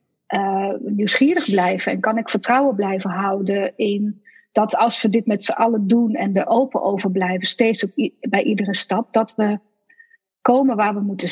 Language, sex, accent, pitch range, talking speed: Dutch, female, Dutch, 195-240 Hz, 180 wpm